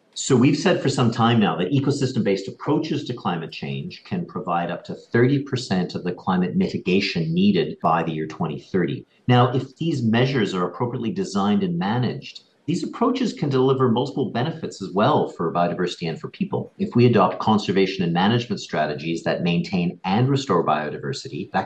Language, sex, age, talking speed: English, male, 50-69, 170 wpm